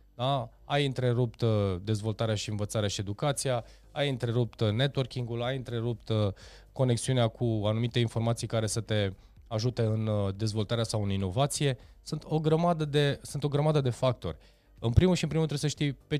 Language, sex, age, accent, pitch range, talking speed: Romanian, male, 20-39, native, 105-130 Hz, 160 wpm